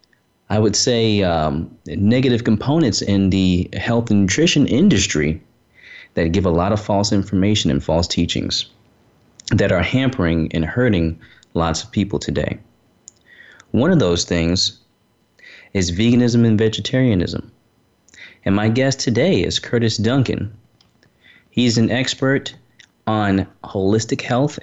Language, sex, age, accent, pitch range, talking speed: English, male, 30-49, American, 90-115 Hz, 125 wpm